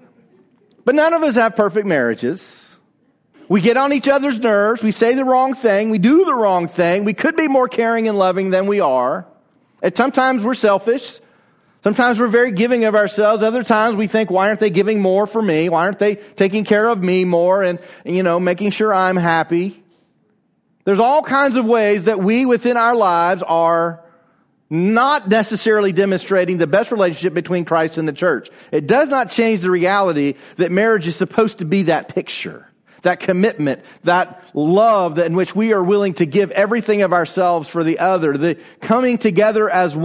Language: English